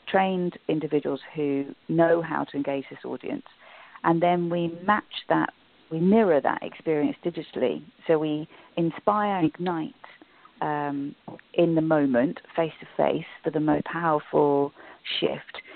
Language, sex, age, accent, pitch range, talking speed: English, female, 40-59, British, 140-170 Hz, 135 wpm